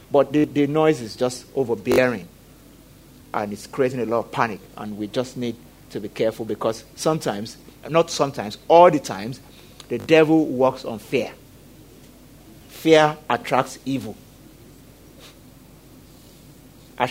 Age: 50-69